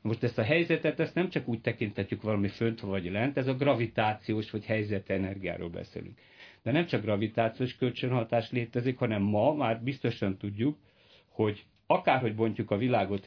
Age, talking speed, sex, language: 60-79, 165 wpm, male, Hungarian